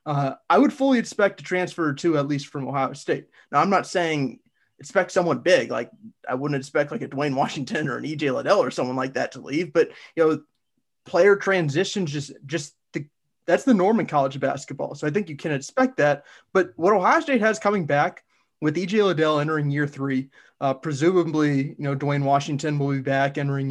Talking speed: 210 wpm